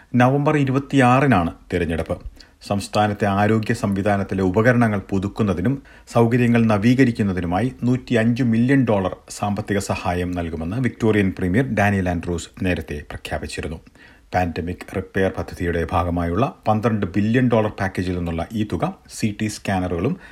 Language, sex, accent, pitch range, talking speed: Malayalam, male, native, 90-115 Hz, 105 wpm